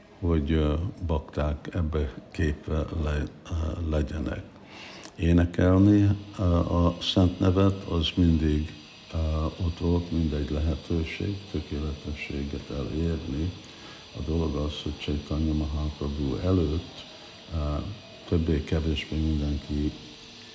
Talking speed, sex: 80 wpm, male